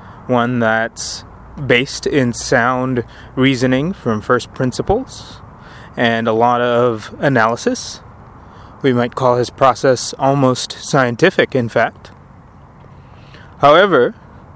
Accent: American